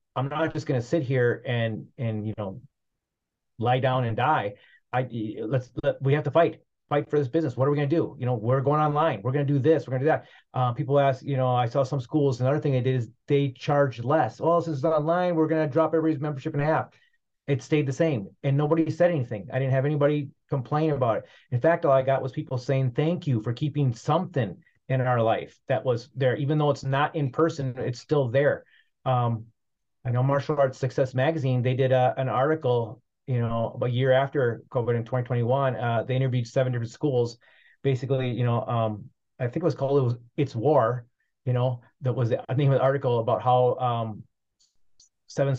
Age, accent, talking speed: 30-49, American, 220 wpm